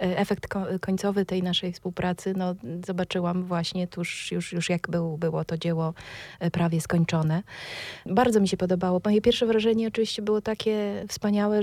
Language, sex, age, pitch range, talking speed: Polish, female, 20-39, 180-205 Hz, 150 wpm